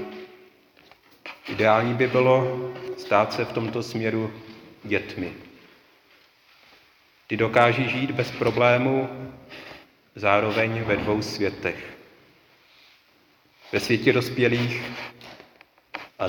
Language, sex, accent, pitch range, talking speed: Czech, male, native, 105-125 Hz, 80 wpm